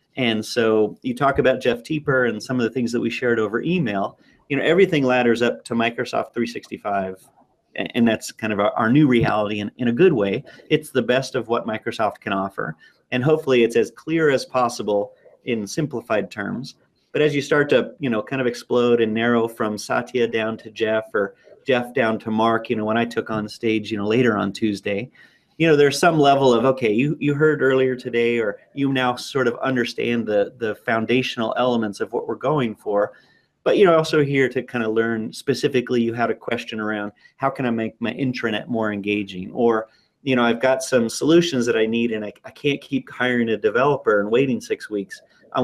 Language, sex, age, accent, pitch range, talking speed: English, male, 30-49, American, 110-130 Hz, 210 wpm